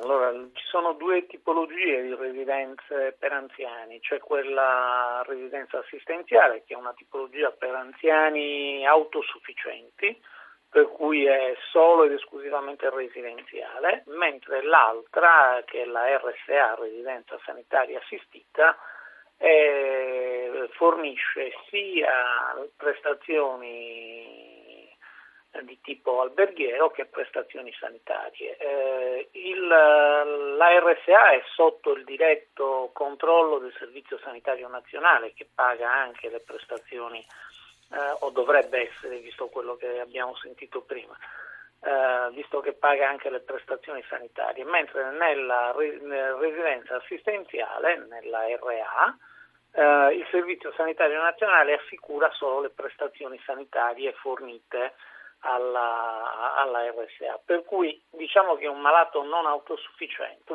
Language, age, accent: Italian, 50-69, native